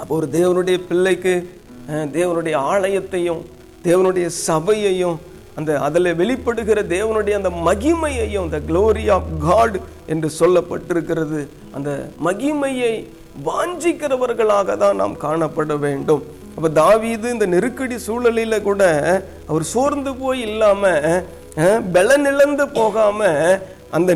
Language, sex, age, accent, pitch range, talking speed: Tamil, male, 50-69, native, 160-230 Hz, 100 wpm